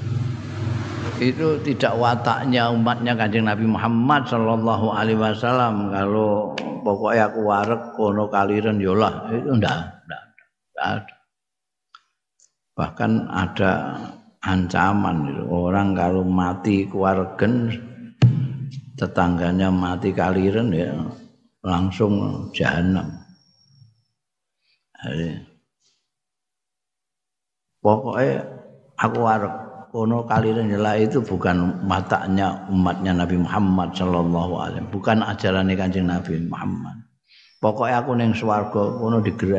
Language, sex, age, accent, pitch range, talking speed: Indonesian, male, 50-69, native, 95-115 Hz, 75 wpm